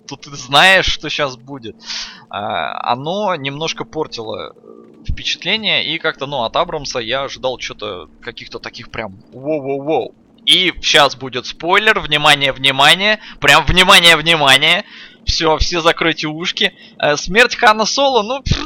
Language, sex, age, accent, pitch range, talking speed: Russian, male, 20-39, native, 135-200 Hz, 125 wpm